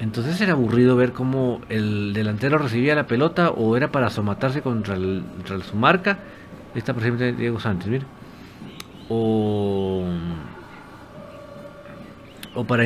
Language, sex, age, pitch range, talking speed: Spanish, male, 50-69, 110-160 Hz, 135 wpm